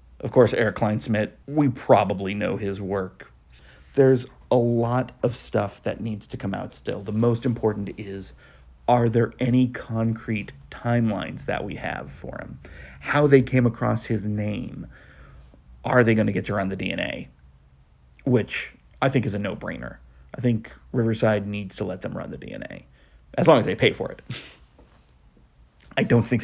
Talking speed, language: 170 wpm, English